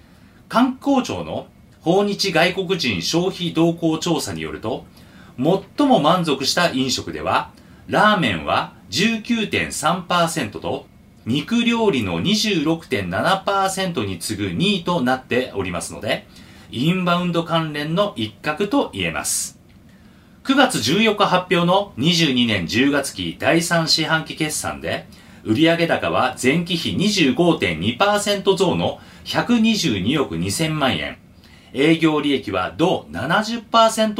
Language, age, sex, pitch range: Japanese, 40-59, male, 130-210 Hz